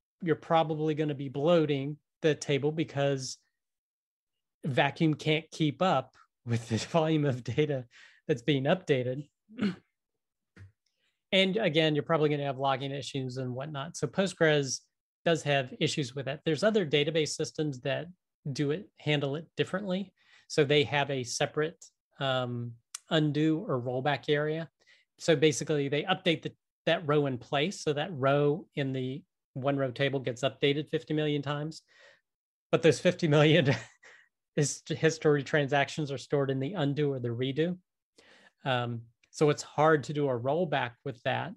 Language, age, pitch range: English, 30-49, 135-160 Hz